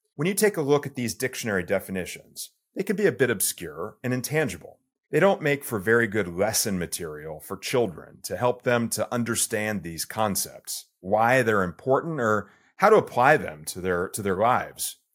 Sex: male